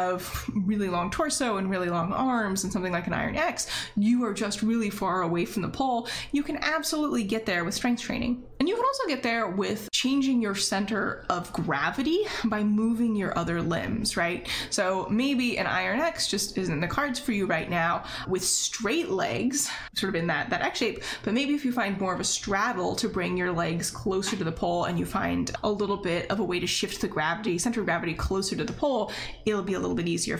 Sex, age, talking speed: female, 20-39, 225 wpm